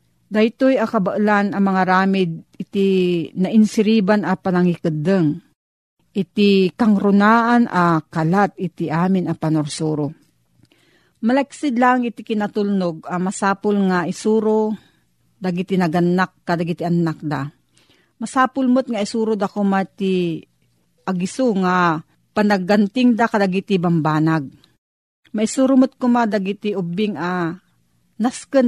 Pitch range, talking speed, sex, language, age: 180-220 Hz, 105 wpm, female, Filipino, 40-59